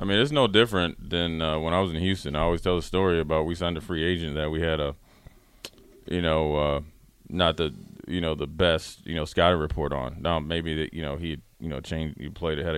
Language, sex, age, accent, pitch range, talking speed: English, male, 20-39, American, 85-95 Hz, 250 wpm